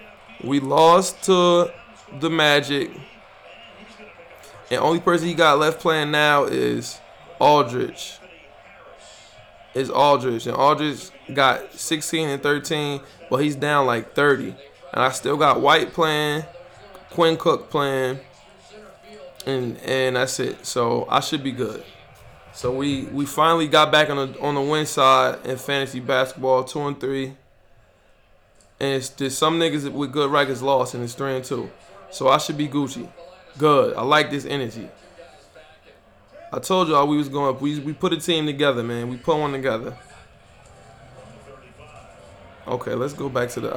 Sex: male